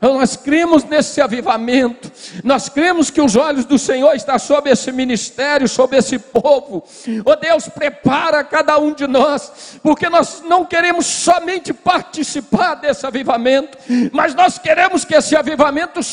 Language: Portuguese